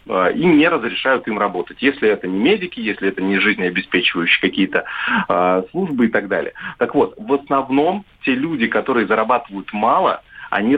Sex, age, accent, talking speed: male, 30-49, native, 155 wpm